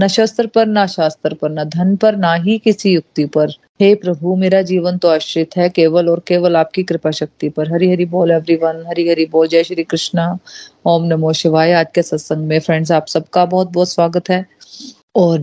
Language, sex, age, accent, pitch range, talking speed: Hindi, female, 30-49, native, 165-190 Hz, 155 wpm